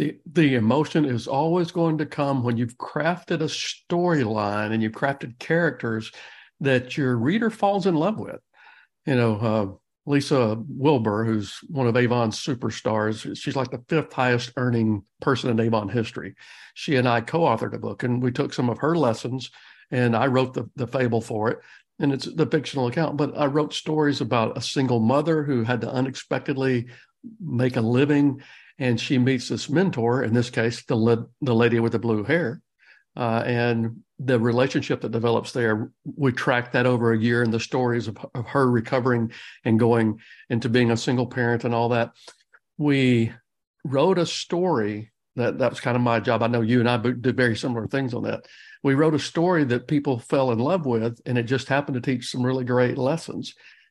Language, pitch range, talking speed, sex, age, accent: English, 115-145 Hz, 195 wpm, male, 50-69, American